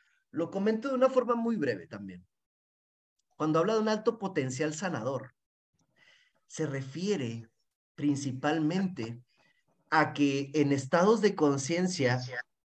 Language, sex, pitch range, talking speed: Spanish, male, 140-190 Hz, 115 wpm